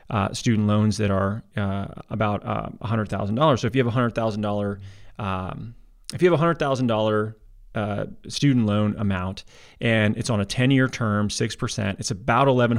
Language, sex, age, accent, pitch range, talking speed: English, male, 30-49, American, 105-130 Hz, 195 wpm